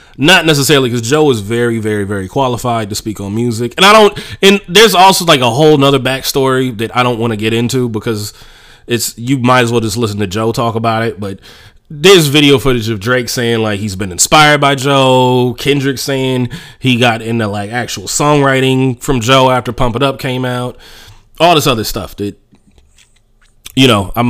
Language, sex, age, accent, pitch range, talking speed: English, male, 30-49, American, 115-145 Hz, 200 wpm